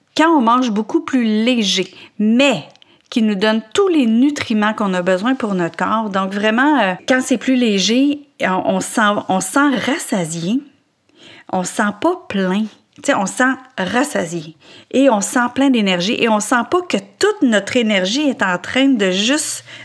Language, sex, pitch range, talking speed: French, female, 190-265 Hz, 170 wpm